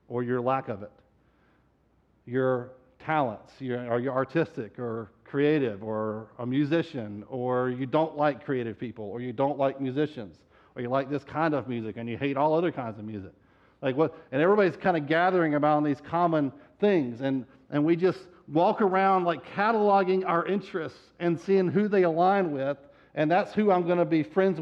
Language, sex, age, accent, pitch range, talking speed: English, male, 50-69, American, 120-175 Hz, 185 wpm